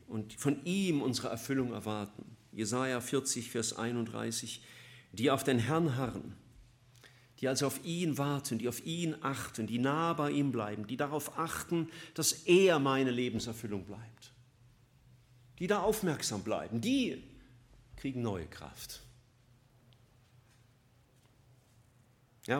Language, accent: German, German